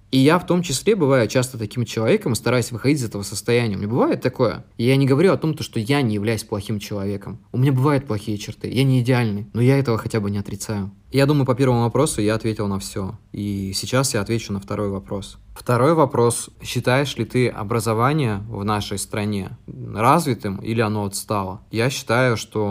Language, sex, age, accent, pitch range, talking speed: Russian, male, 20-39, native, 100-125 Hz, 200 wpm